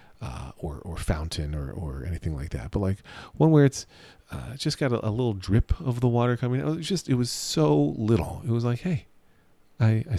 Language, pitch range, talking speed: English, 90-120 Hz, 230 wpm